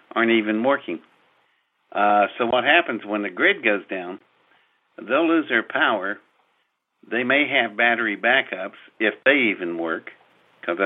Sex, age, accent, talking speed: male, 50-69, American, 145 wpm